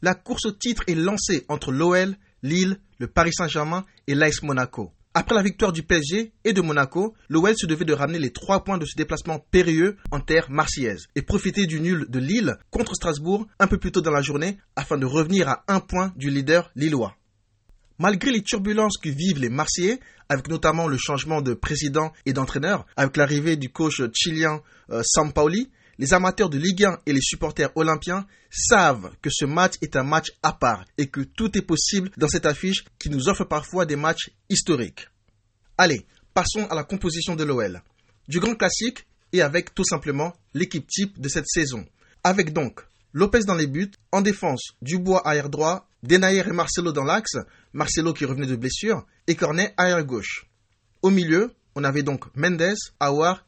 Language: French